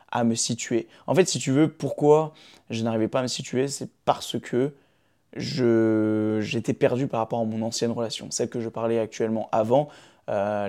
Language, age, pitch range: French, 20-39, 115-135 Hz